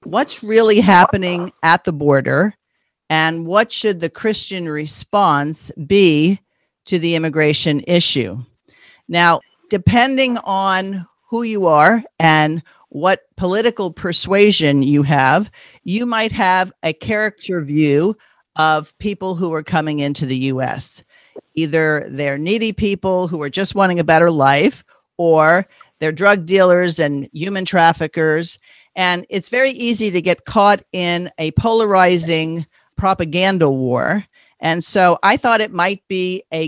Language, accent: English, American